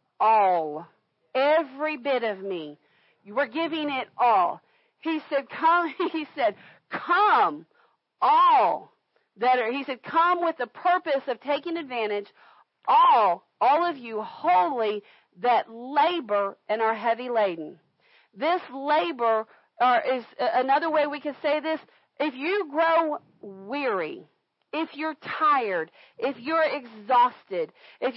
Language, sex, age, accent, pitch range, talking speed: English, female, 40-59, American, 240-320 Hz, 130 wpm